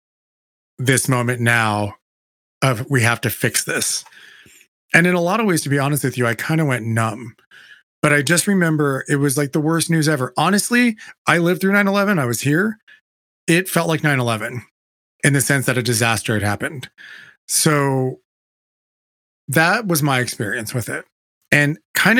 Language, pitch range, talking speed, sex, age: English, 125-175 Hz, 180 wpm, male, 30-49